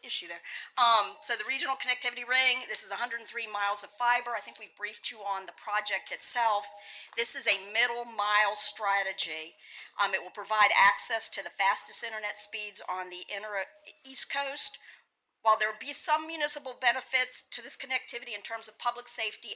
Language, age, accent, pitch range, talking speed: English, 50-69, American, 200-235 Hz, 180 wpm